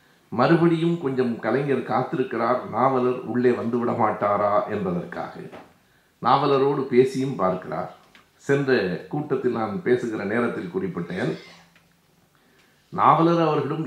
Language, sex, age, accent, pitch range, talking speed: Tamil, male, 50-69, native, 115-160 Hz, 85 wpm